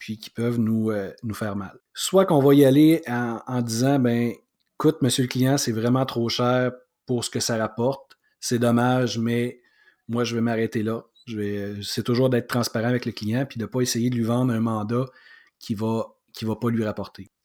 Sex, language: male, French